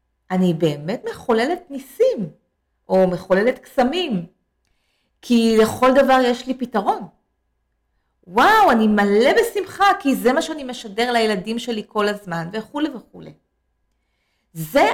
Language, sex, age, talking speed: English, female, 30-49, 115 wpm